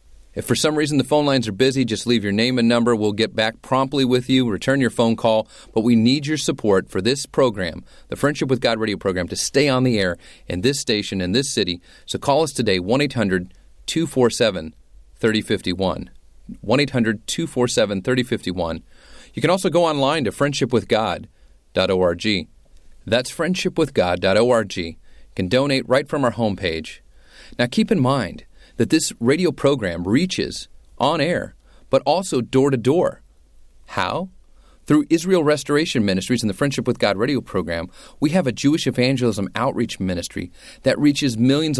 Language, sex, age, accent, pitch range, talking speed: English, male, 30-49, American, 100-140 Hz, 155 wpm